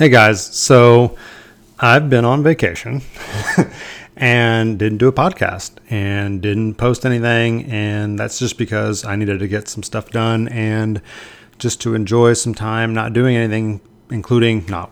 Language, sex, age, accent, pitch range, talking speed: English, male, 30-49, American, 105-120 Hz, 155 wpm